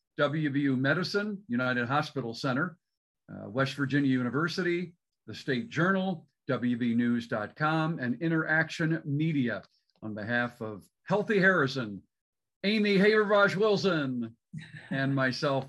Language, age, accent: English, 50-69, American